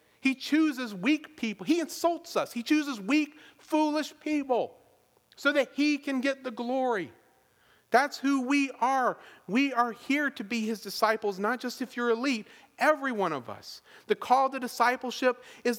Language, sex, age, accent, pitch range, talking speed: English, male, 40-59, American, 195-260 Hz, 165 wpm